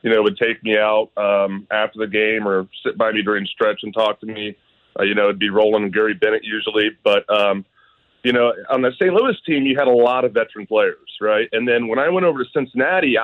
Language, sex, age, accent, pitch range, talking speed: English, male, 30-49, American, 105-125 Hz, 250 wpm